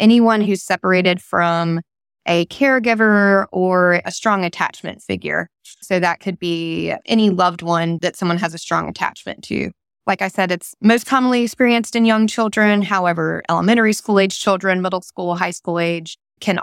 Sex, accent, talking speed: female, American, 160 wpm